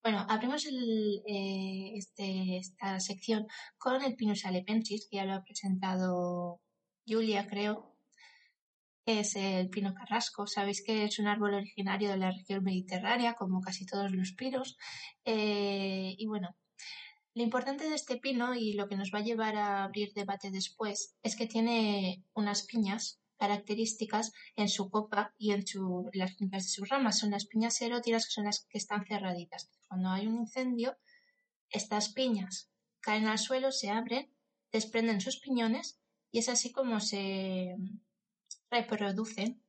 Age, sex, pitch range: 20-39, female, 195-235 Hz